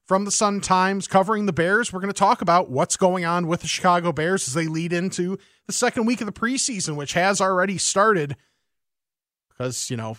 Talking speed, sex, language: 205 wpm, male, English